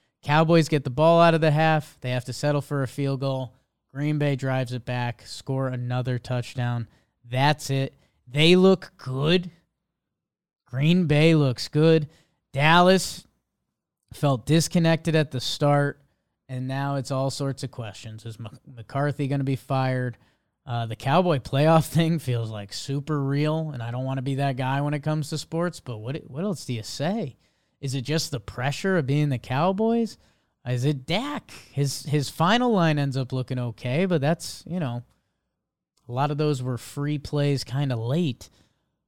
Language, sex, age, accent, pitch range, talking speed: English, male, 20-39, American, 125-155 Hz, 175 wpm